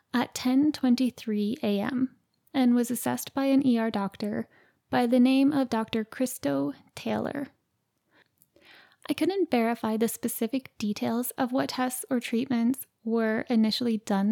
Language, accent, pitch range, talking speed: English, American, 215-265 Hz, 130 wpm